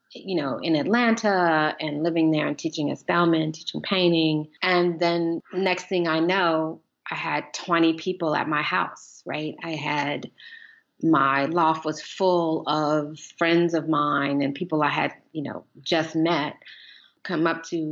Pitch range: 150-170 Hz